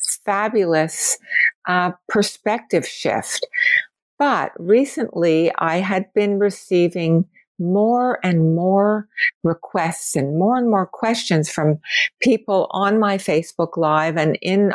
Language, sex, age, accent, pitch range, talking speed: English, female, 60-79, American, 170-220 Hz, 110 wpm